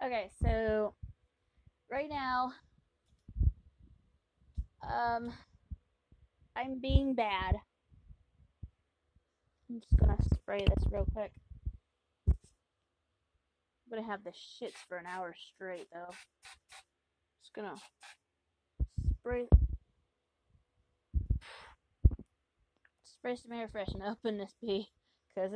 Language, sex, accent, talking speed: English, female, American, 85 wpm